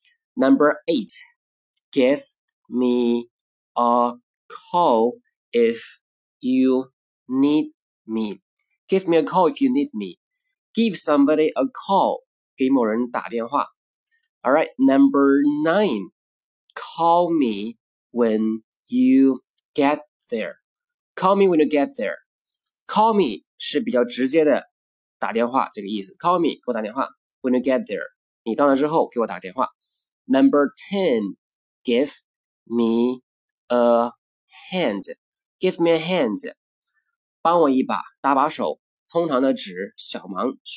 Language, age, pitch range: Chinese, 20-39, 130-210 Hz